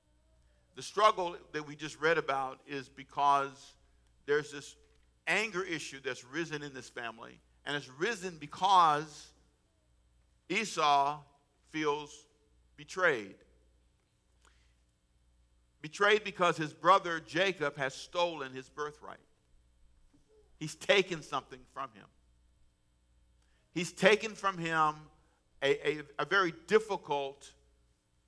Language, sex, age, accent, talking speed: English, male, 50-69, American, 100 wpm